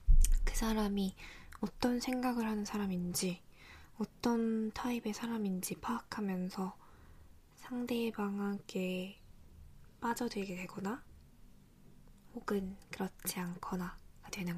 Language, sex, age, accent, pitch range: Korean, female, 20-39, native, 185-220 Hz